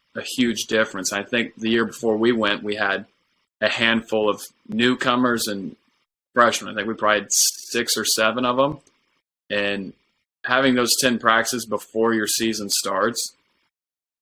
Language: English